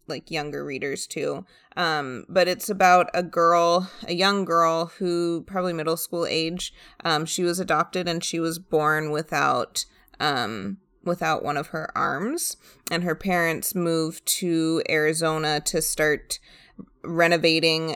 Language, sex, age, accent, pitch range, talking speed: English, female, 20-39, American, 160-185 Hz, 140 wpm